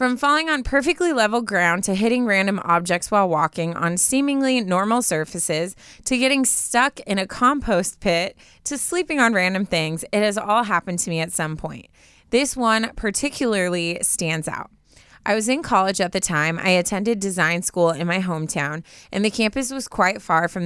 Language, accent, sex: English, American, female